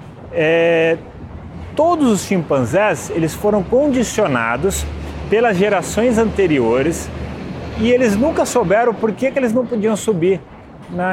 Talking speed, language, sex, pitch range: 120 wpm, Portuguese, male, 145-225 Hz